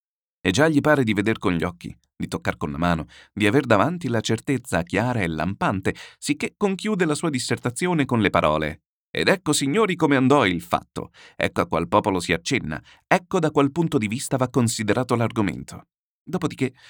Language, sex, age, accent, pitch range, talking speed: Italian, male, 30-49, native, 90-140 Hz, 190 wpm